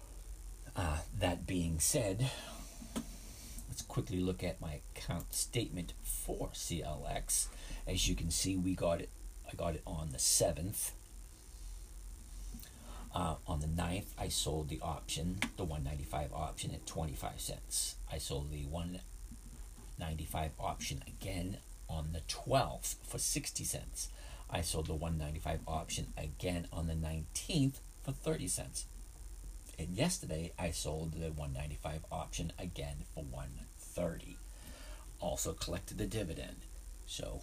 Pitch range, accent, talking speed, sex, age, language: 75-90 Hz, American, 125 wpm, male, 50-69, English